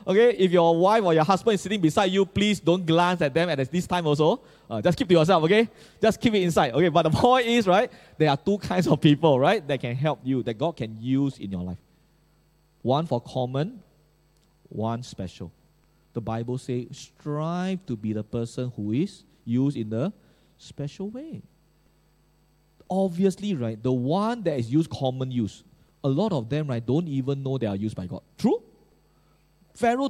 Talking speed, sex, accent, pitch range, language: 195 wpm, male, Malaysian, 125-185 Hz, English